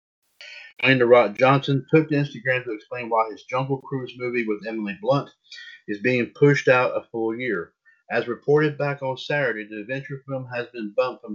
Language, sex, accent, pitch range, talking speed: English, male, American, 115-150 Hz, 175 wpm